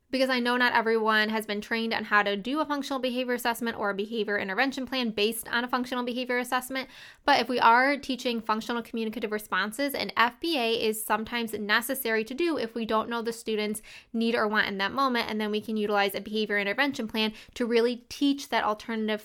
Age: 20-39